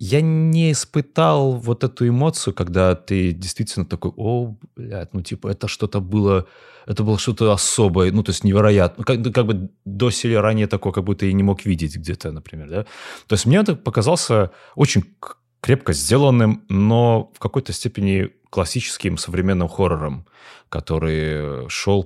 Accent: native